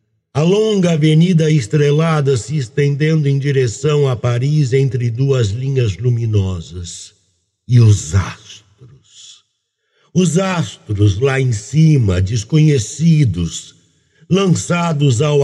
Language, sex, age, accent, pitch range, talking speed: Portuguese, male, 60-79, Brazilian, 100-140 Hz, 95 wpm